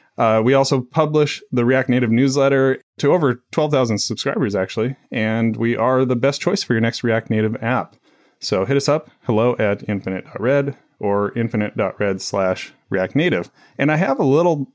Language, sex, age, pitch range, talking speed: English, male, 30-49, 100-135 Hz, 165 wpm